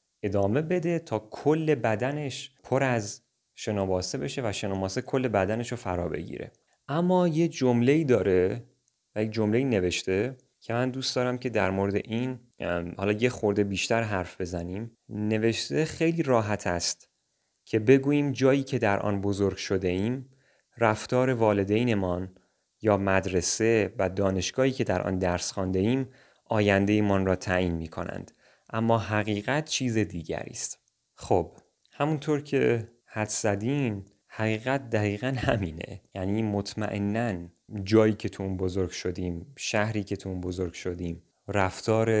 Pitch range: 95-120 Hz